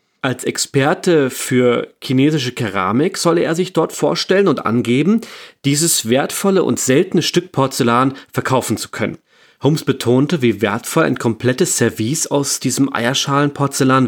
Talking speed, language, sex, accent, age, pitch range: 130 wpm, German, male, German, 30-49, 120-155 Hz